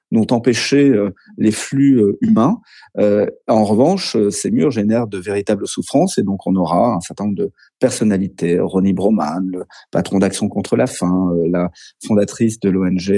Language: French